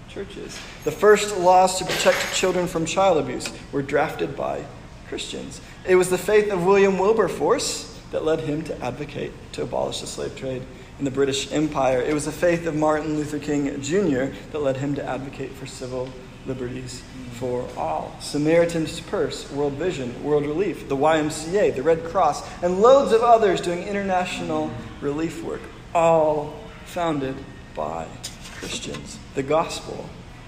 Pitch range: 130-165 Hz